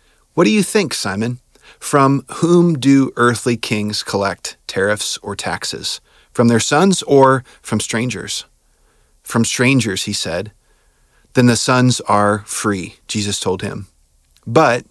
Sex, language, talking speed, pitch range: male, English, 135 wpm, 110-140 Hz